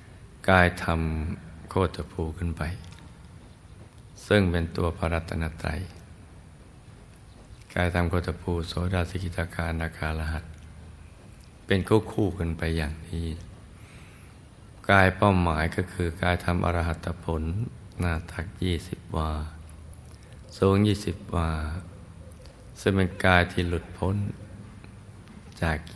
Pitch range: 85-95 Hz